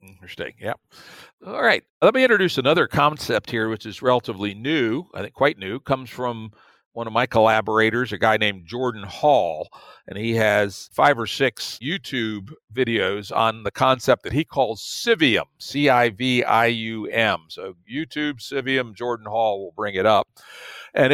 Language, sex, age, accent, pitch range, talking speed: English, male, 60-79, American, 110-140 Hz, 155 wpm